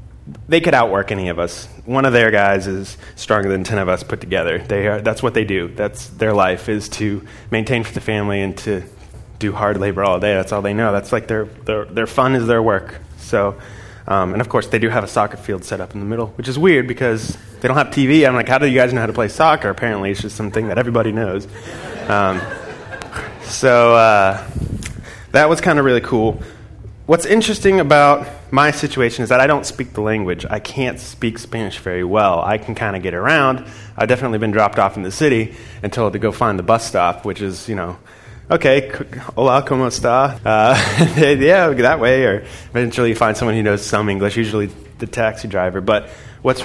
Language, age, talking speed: English, 20-39, 220 wpm